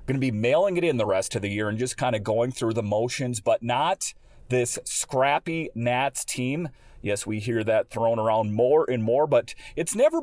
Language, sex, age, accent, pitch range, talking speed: English, male, 40-59, American, 115-145 Hz, 215 wpm